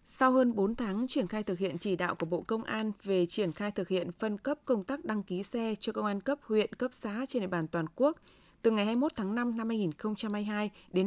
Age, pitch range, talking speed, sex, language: 20-39, 190-245 Hz, 250 wpm, female, Vietnamese